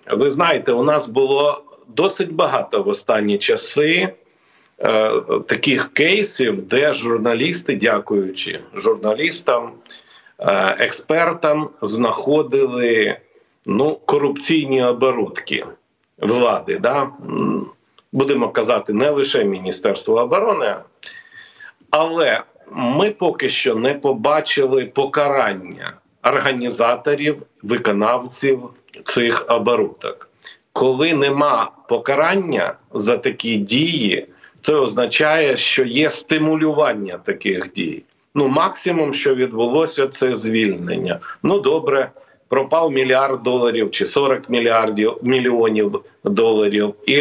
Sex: male